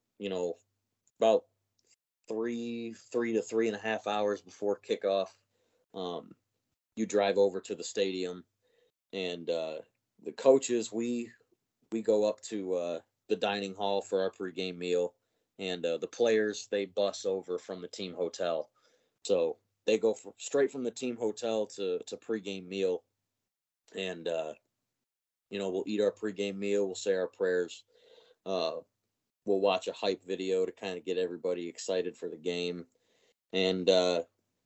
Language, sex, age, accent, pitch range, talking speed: Turkish, male, 30-49, American, 95-120 Hz, 155 wpm